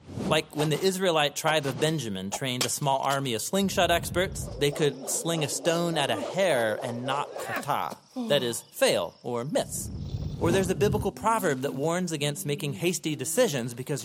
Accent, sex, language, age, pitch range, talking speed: American, male, English, 30-49, 130-175 Hz, 180 wpm